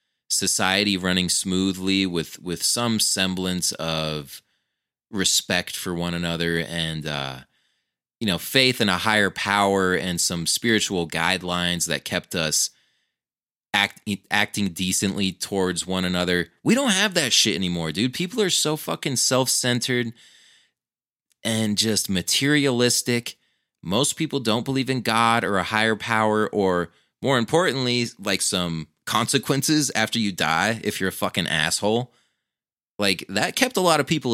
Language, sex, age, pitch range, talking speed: English, male, 30-49, 90-115 Hz, 140 wpm